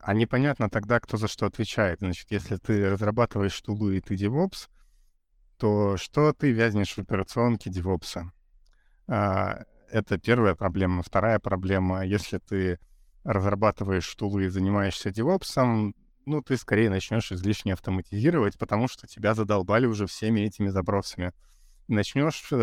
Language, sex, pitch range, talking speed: Russian, male, 95-115 Hz, 130 wpm